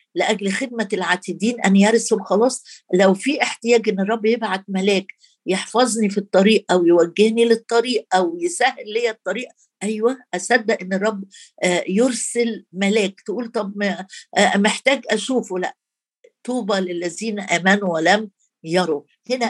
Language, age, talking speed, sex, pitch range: Arabic, 50-69, 125 wpm, female, 190-240 Hz